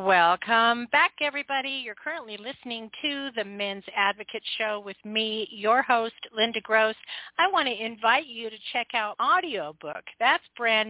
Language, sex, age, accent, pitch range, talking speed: English, female, 50-69, American, 205-255 Hz, 155 wpm